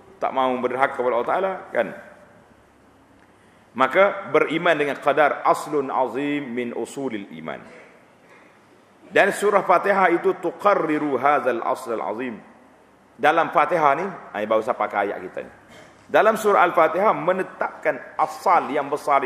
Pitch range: 130-185 Hz